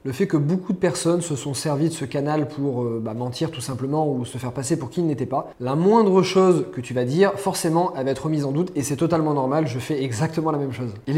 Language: French